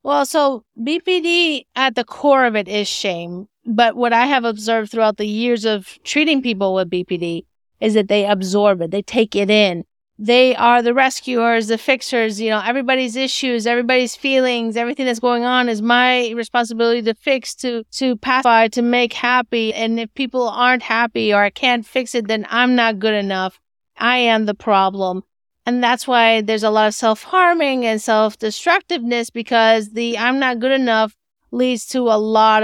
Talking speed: 180 wpm